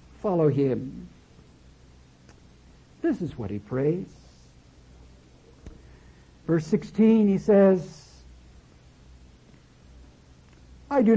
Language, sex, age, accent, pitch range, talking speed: English, male, 60-79, American, 130-205 Hz, 70 wpm